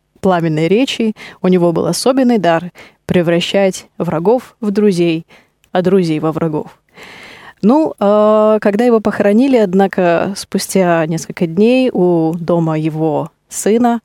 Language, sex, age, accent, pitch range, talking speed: Russian, female, 20-39, native, 170-205 Hz, 120 wpm